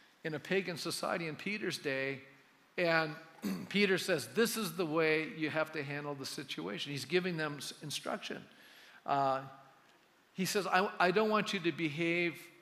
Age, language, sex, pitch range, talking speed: 50-69, English, male, 145-185 Hz, 160 wpm